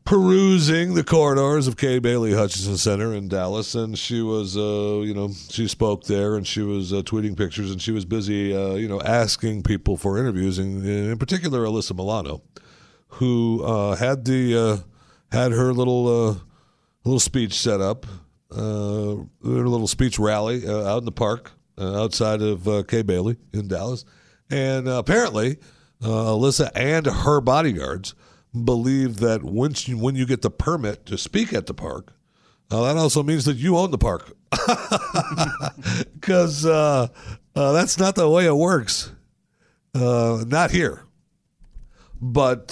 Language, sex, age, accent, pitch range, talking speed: English, male, 50-69, American, 100-125 Hz, 160 wpm